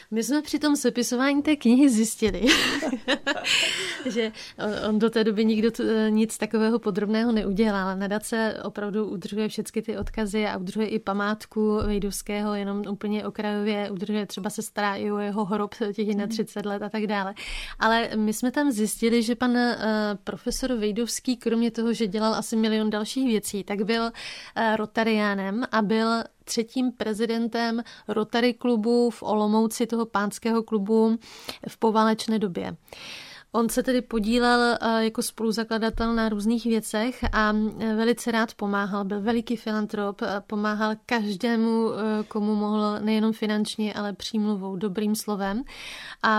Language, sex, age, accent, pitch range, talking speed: Czech, female, 30-49, native, 210-230 Hz, 140 wpm